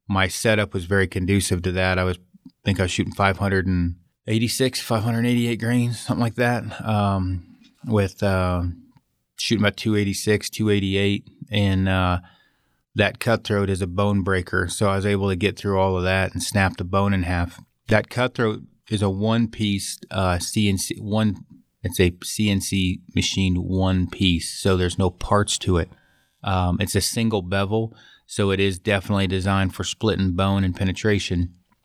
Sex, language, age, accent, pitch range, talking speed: male, English, 30-49, American, 95-105 Hz, 175 wpm